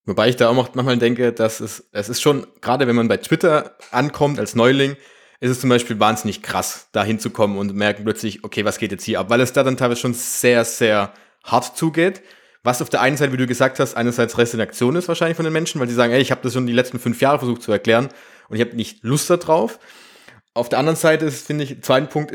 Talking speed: 250 wpm